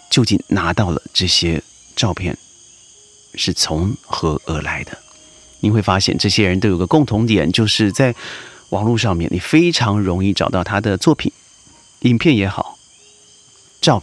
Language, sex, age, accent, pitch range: Chinese, male, 30-49, native, 95-120 Hz